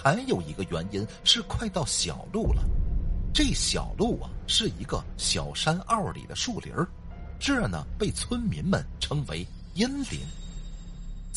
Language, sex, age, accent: Chinese, male, 50-69, native